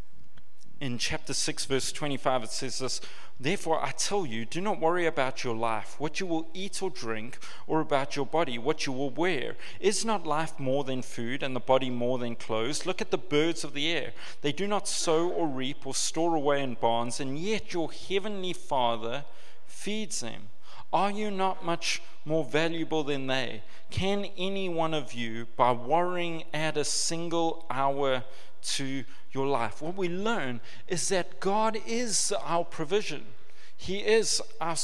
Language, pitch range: English, 125-180 Hz